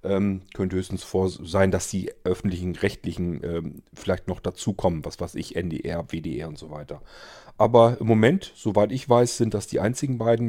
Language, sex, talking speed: German, male, 175 wpm